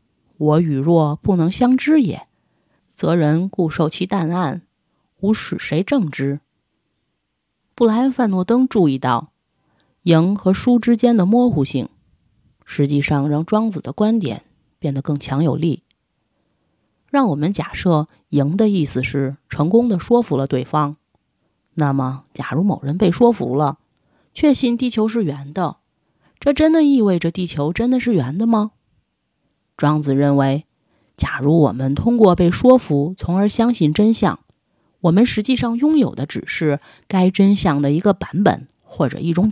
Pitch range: 145-220 Hz